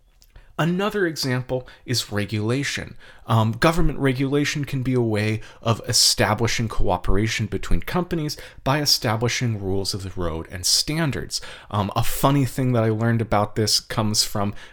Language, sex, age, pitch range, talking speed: English, male, 30-49, 105-135 Hz, 145 wpm